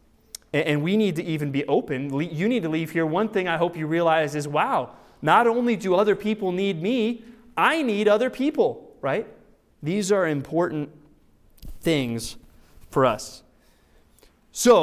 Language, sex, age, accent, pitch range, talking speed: English, male, 20-39, American, 135-180 Hz, 160 wpm